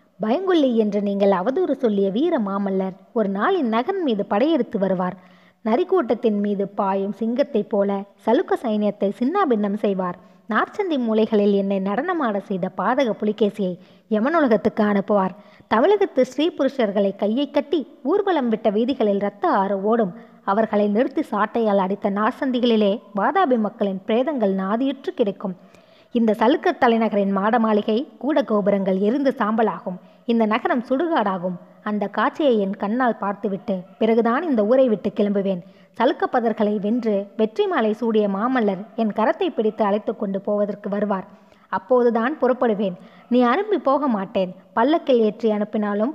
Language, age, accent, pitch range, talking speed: Tamil, 20-39, native, 200-245 Hz, 120 wpm